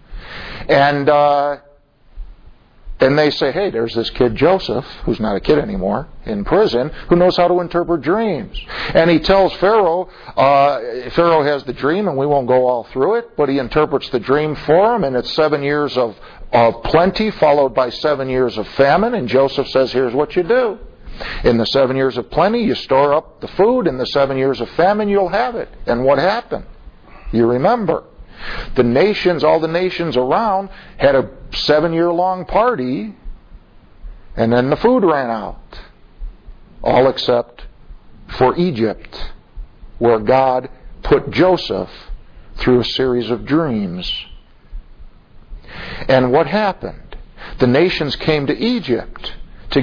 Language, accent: English, American